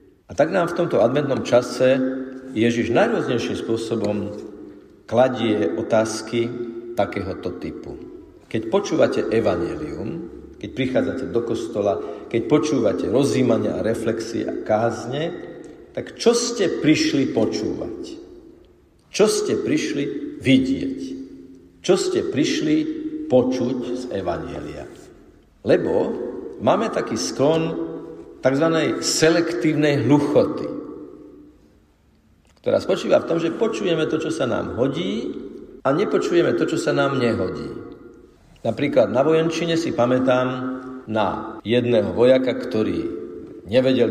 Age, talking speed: 50-69, 105 wpm